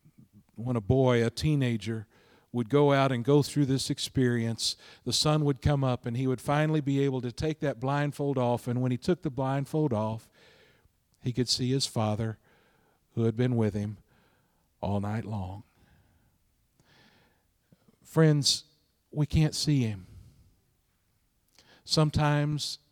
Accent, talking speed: American, 145 wpm